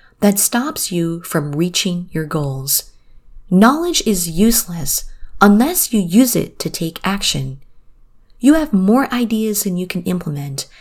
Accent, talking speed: American, 140 wpm